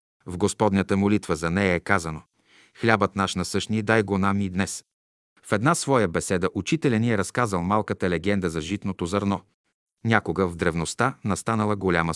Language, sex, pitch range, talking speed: Bulgarian, male, 95-120 Hz, 165 wpm